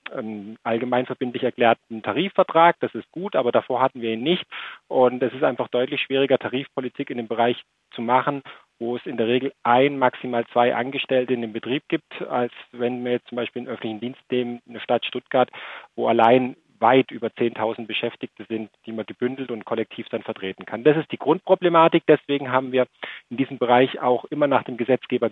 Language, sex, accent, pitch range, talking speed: German, male, German, 115-140 Hz, 190 wpm